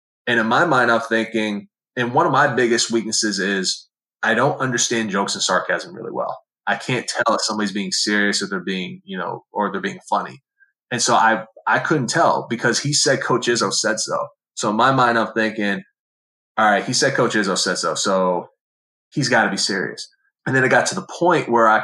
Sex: male